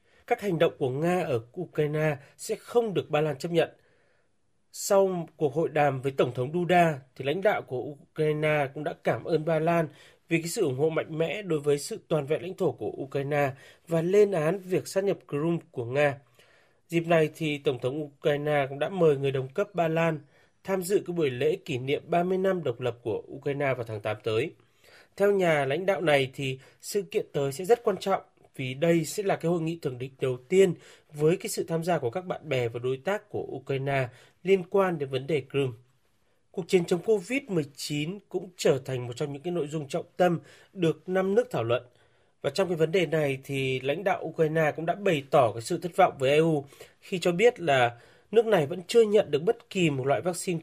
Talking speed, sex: 225 wpm, male